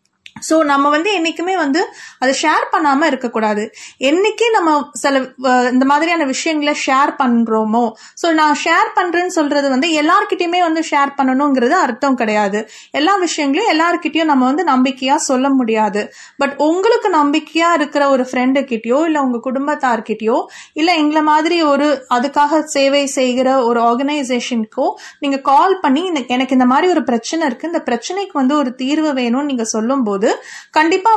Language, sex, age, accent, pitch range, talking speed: Tamil, female, 30-49, native, 260-325 Hz, 140 wpm